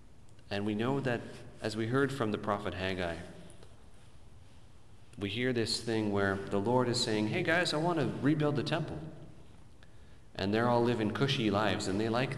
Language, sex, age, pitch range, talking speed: English, male, 40-59, 95-120 Hz, 180 wpm